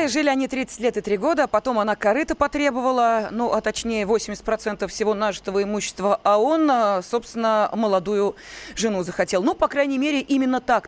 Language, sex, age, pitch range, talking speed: Russian, female, 20-39, 195-265 Hz, 165 wpm